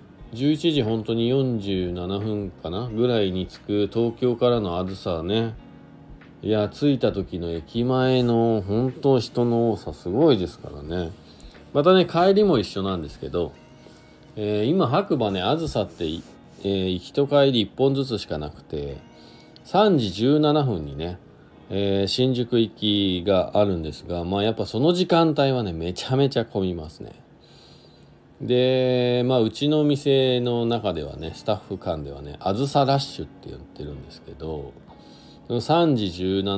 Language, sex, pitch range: Japanese, male, 85-125 Hz